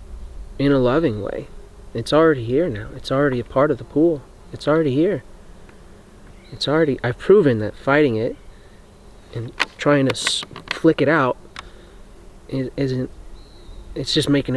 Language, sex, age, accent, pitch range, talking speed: English, male, 30-49, American, 95-135 Hz, 150 wpm